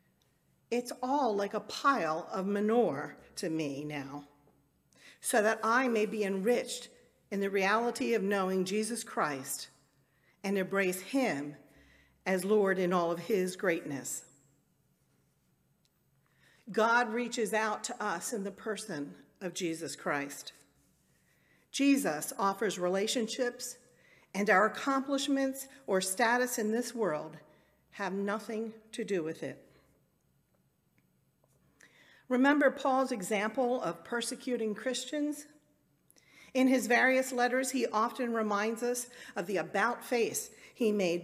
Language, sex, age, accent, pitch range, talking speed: English, female, 50-69, American, 190-245 Hz, 120 wpm